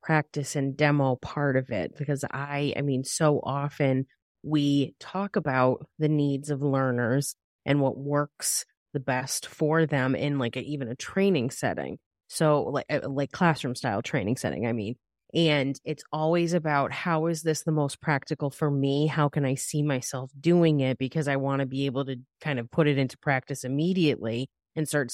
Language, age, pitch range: English, 30-49, 130-150 Hz